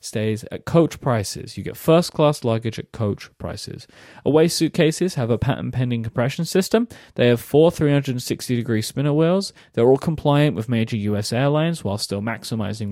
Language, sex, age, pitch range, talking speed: English, male, 20-39, 110-140 Hz, 170 wpm